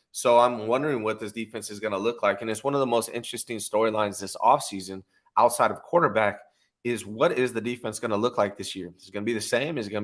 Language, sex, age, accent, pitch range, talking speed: English, male, 30-49, American, 100-125 Hz, 270 wpm